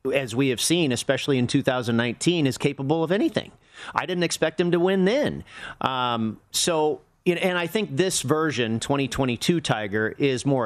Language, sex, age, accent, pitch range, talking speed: English, male, 40-59, American, 125-155 Hz, 165 wpm